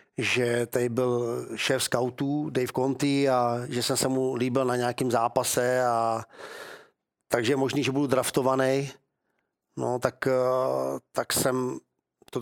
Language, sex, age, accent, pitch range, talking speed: Czech, male, 40-59, native, 125-135 Hz, 130 wpm